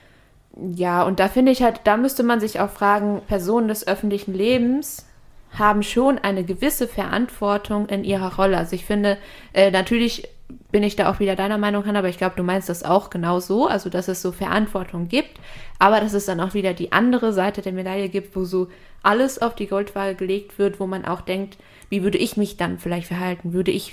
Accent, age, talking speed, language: German, 20-39, 210 wpm, German